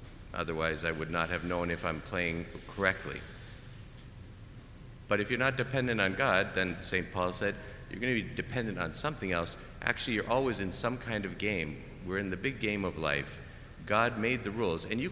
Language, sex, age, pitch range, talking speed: English, male, 50-69, 85-110 Hz, 195 wpm